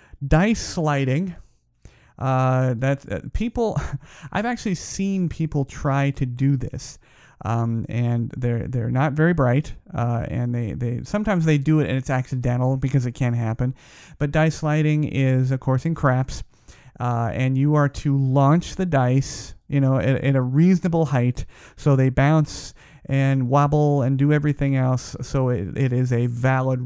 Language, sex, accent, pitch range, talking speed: English, male, American, 120-145 Hz, 160 wpm